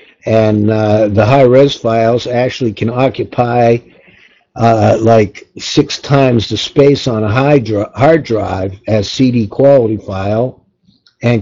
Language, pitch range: English, 110-135 Hz